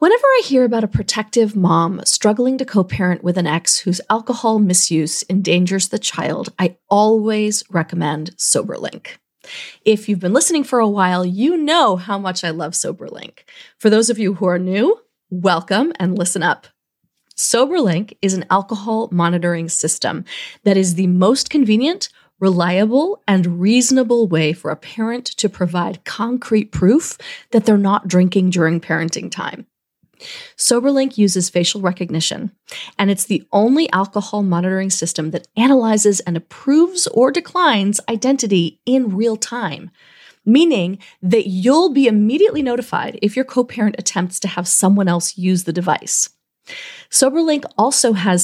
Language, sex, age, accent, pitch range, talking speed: English, female, 30-49, American, 180-245 Hz, 145 wpm